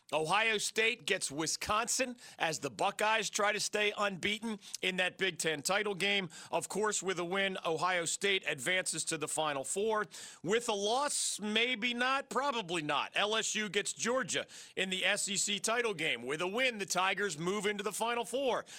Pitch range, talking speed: 175-215 Hz, 170 wpm